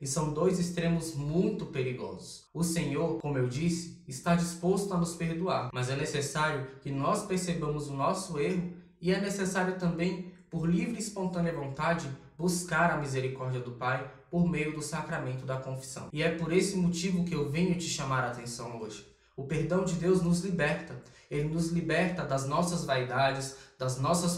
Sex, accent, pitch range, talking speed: male, Brazilian, 145-180 Hz, 175 wpm